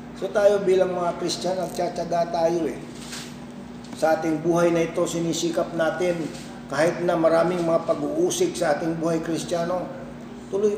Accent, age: Filipino, 40-59